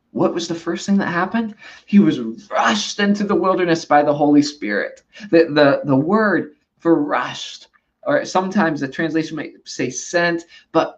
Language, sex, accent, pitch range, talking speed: English, male, American, 135-185 Hz, 170 wpm